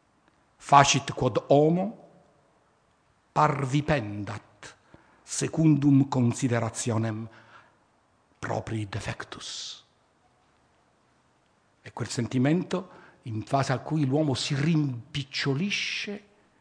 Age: 60-79